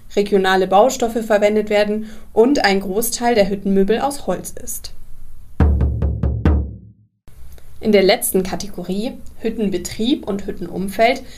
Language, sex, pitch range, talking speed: German, female, 195-235 Hz, 100 wpm